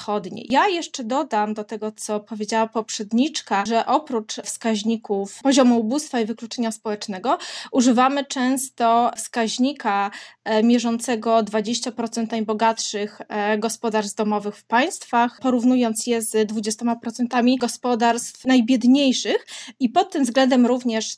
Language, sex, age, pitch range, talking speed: Polish, female, 20-39, 220-260 Hz, 105 wpm